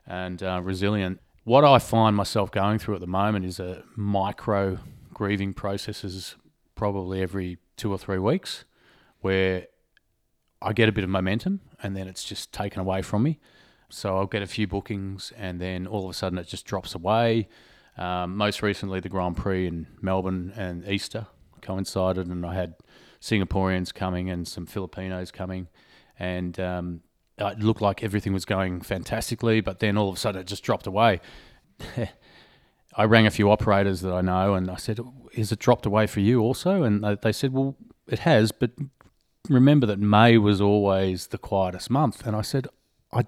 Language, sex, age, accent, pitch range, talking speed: English, male, 30-49, Australian, 95-110 Hz, 180 wpm